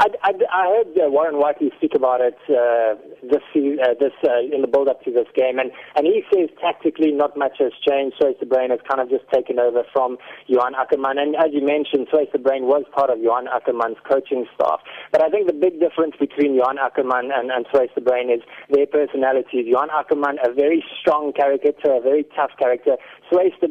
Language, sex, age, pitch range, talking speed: English, male, 20-39, 130-170 Hz, 215 wpm